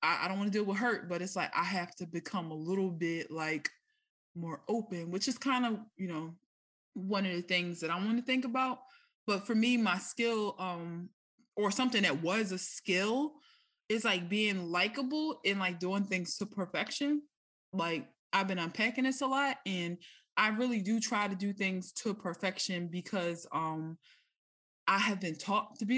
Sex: female